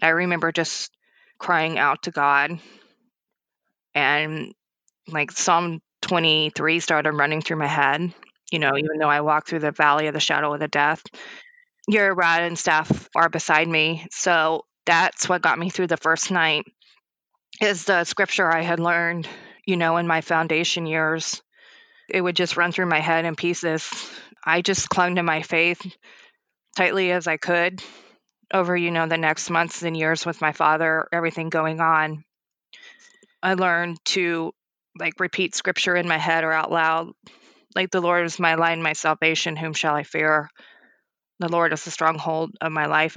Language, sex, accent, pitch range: English, female, American, 160-180 Hz